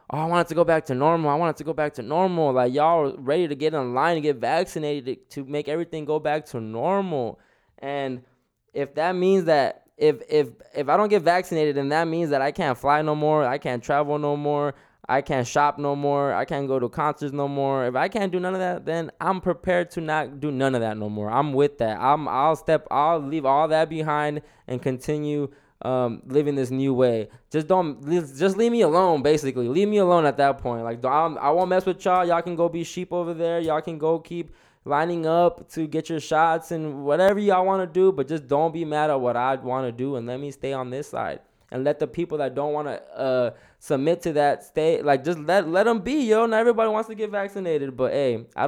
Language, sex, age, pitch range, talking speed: English, male, 10-29, 135-170 Hz, 245 wpm